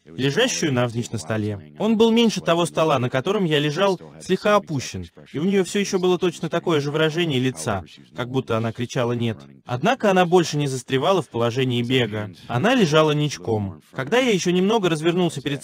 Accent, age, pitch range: native, 20-39, 115-175 Hz